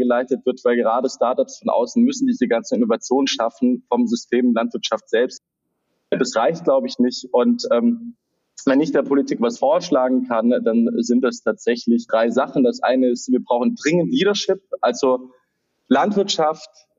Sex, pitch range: male, 120-155 Hz